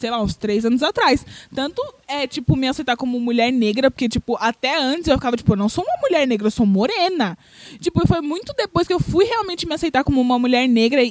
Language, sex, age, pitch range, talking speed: Portuguese, female, 20-39, 235-290 Hz, 240 wpm